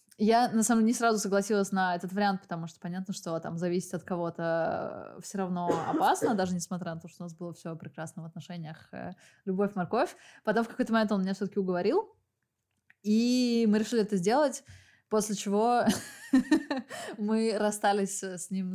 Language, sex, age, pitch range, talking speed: Russian, female, 20-39, 190-225 Hz, 175 wpm